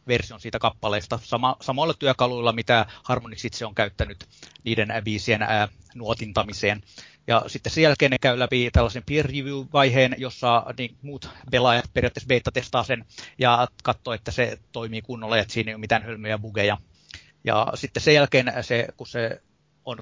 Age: 30-49